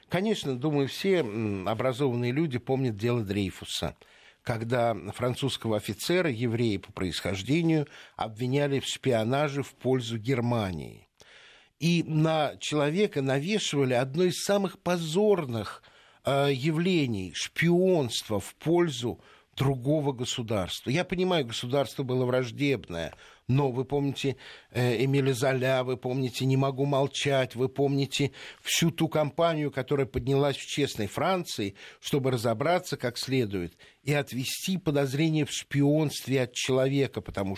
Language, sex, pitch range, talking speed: Russian, male, 115-145 Hz, 115 wpm